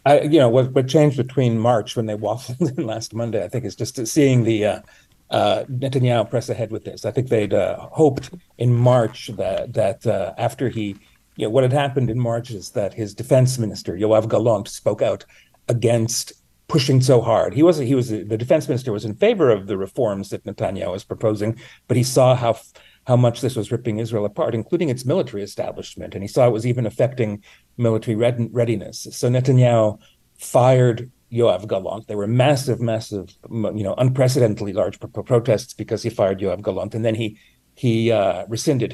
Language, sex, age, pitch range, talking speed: English, male, 40-59, 110-125 Hz, 195 wpm